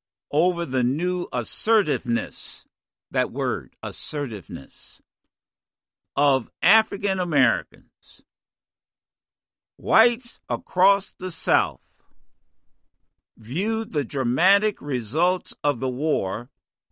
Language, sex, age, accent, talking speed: English, male, 60-79, American, 75 wpm